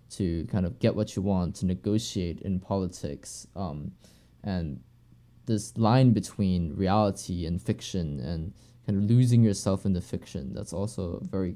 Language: English